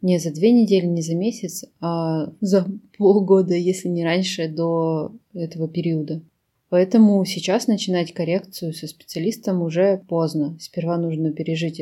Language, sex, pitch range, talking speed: Russian, female, 160-185 Hz, 135 wpm